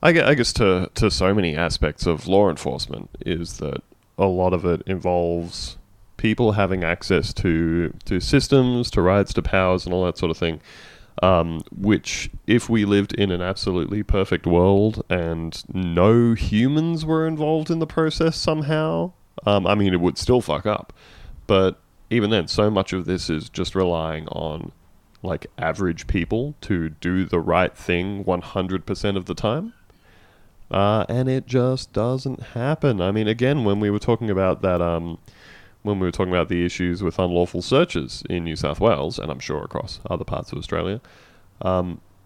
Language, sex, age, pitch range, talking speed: English, male, 20-39, 85-110 Hz, 175 wpm